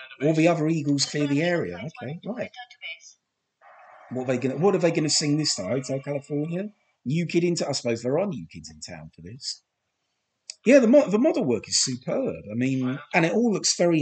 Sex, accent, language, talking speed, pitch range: male, British, English, 195 wpm, 120-195 Hz